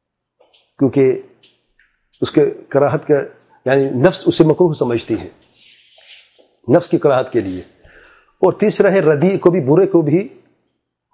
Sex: male